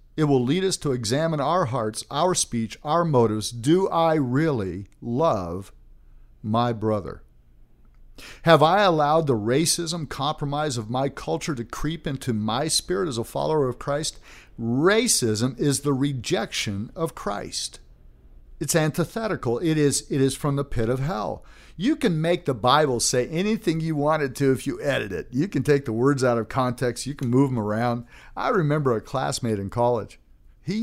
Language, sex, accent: English, male, American